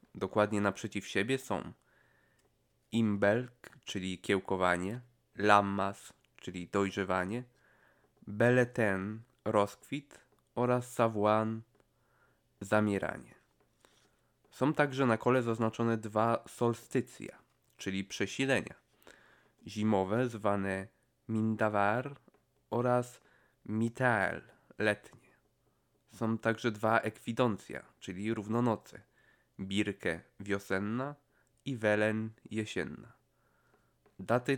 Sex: male